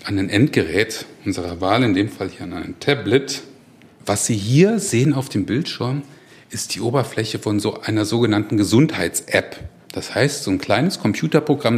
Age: 40-59